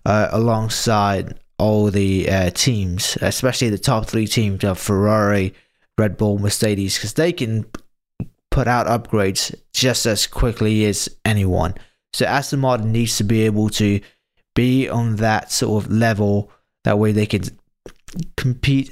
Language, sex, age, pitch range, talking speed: English, male, 20-39, 105-125 Hz, 145 wpm